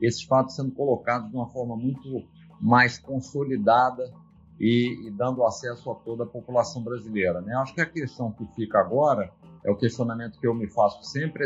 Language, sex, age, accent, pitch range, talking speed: Portuguese, male, 50-69, Brazilian, 115-140 Hz, 185 wpm